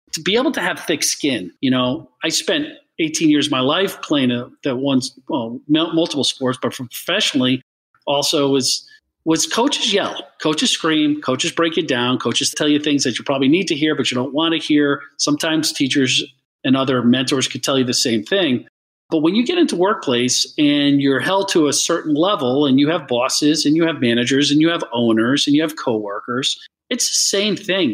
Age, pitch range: 40-59, 130-160 Hz